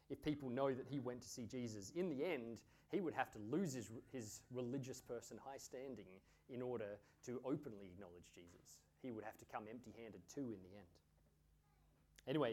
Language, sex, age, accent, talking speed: English, male, 30-49, Australian, 190 wpm